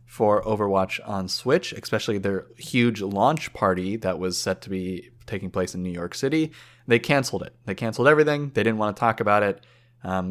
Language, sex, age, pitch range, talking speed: English, male, 20-39, 100-125 Hz, 200 wpm